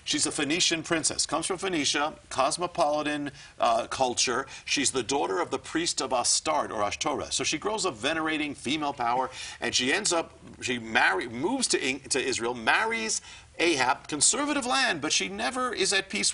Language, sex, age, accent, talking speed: English, male, 50-69, American, 175 wpm